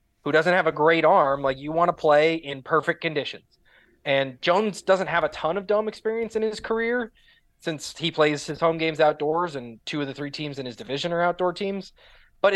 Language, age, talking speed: English, 20-39, 220 wpm